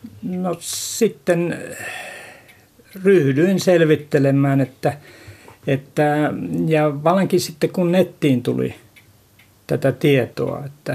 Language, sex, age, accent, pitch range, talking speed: Finnish, male, 60-79, native, 125-150 Hz, 80 wpm